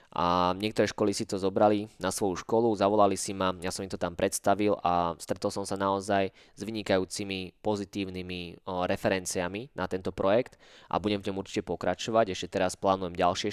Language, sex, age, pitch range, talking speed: Slovak, male, 20-39, 90-105 Hz, 175 wpm